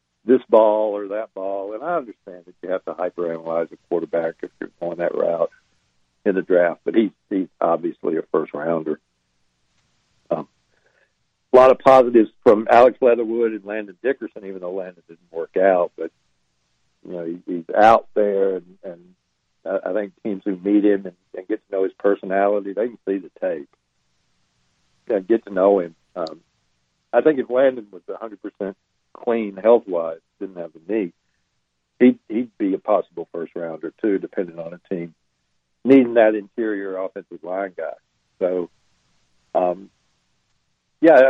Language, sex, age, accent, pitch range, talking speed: English, male, 60-79, American, 85-110 Hz, 170 wpm